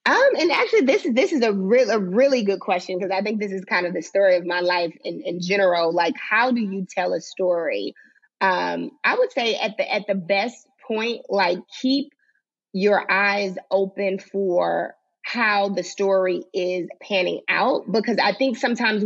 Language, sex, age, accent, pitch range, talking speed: English, female, 30-49, American, 190-235 Hz, 190 wpm